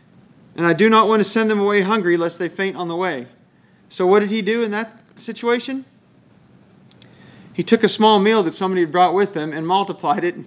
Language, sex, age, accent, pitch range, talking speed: English, male, 40-59, American, 170-215 Hz, 225 wpm